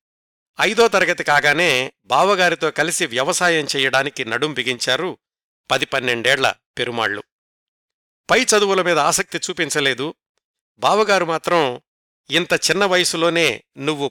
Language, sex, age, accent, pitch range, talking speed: Telugu, male, 60-79, native, 140-180 Hz, 95 wpm